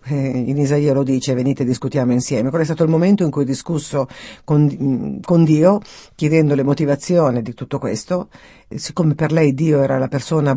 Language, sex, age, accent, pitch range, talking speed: Italian, female, 50-69, native, 135-160 Hz, 185 wpm